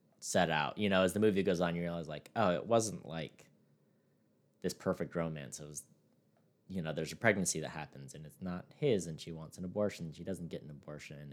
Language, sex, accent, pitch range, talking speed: English, male, American, 85-125 Hz, 230 wpm